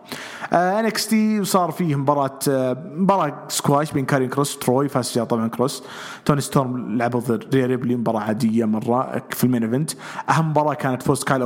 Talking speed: 160 wpm